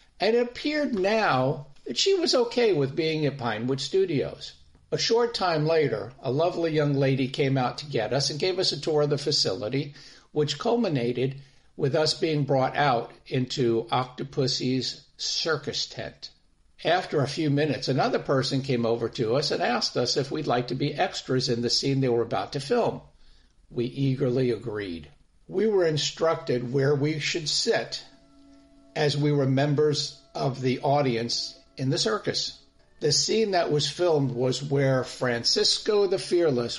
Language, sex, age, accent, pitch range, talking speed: English, male, 50-69, American, 125-155 Hz, 165 wpm